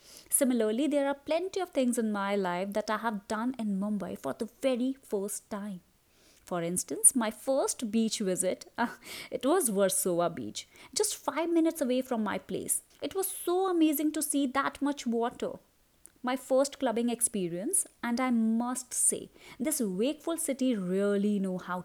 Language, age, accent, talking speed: English, 20-39, Indian, 165 wpm